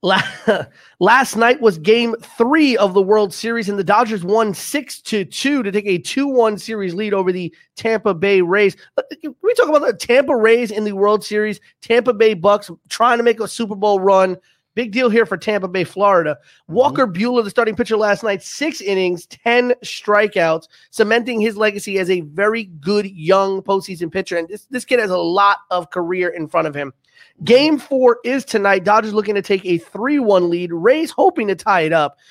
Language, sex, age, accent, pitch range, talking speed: English, male, 30-49, American, 185-230 Hz, 195 wpm